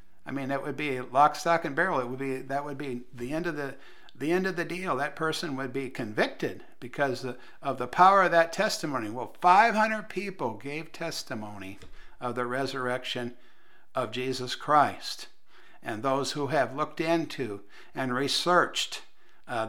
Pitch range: 125-170 Hz